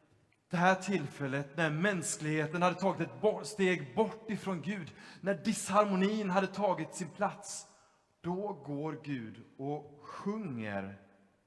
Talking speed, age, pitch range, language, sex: 120 wpm, 30-49, 130-180 Hz, Swedish, male